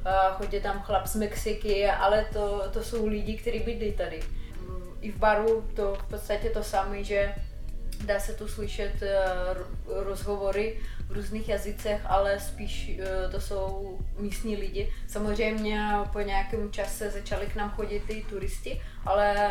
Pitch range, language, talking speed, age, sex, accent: 205-225 Hz, Czech, 145 wpm, 20-39, female, native